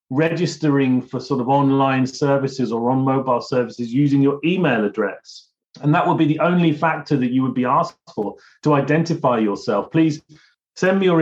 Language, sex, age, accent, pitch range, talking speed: English, male, 30-49, British, 125-160 Hz, 180 wpm